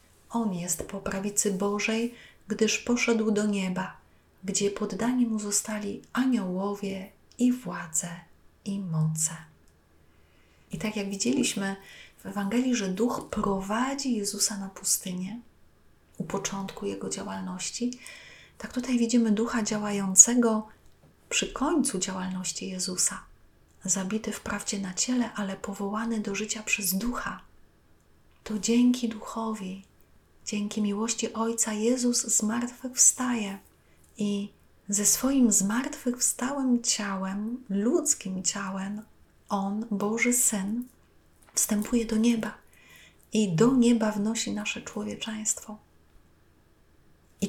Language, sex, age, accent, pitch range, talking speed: Polish, female, 30-49, native, 195-235 Hz, 100 wpm